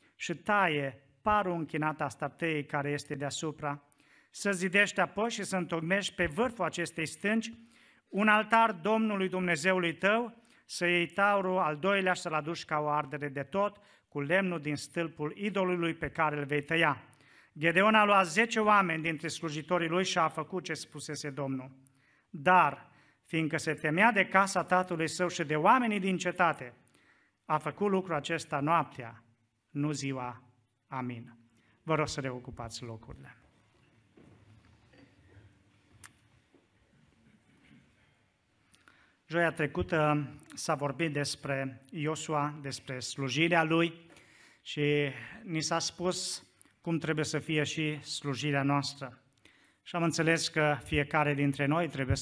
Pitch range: 140-175 Hz